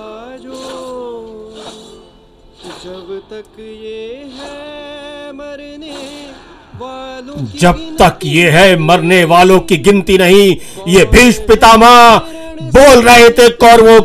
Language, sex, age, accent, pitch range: Hindi, male, 50-69, native, 185-235 Hz